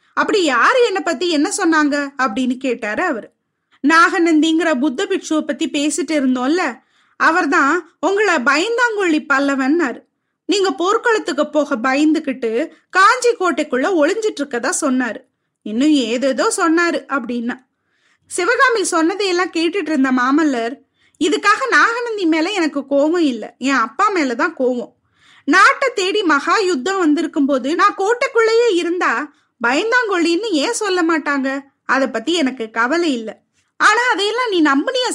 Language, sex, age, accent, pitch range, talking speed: Tamil, female, 20-39, native, 275-370 Hz, 115 wpm